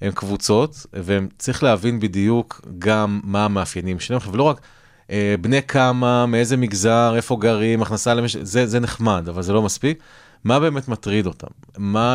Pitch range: 100-120 Hz